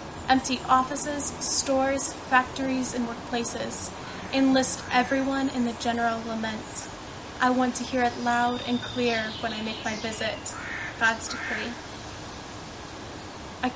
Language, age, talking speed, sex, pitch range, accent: English, 20-39, 120 wpm, female, 235-260 Hz, American